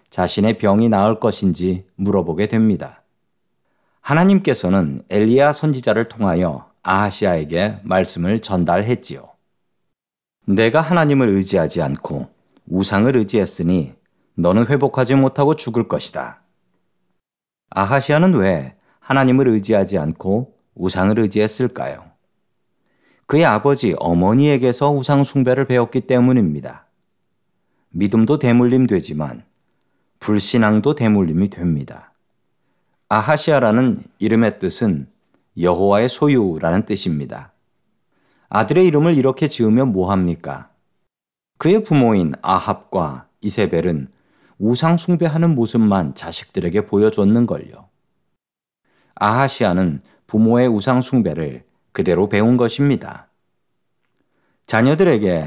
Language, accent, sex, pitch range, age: Korean, native, male, 95-135 Hz, 40-59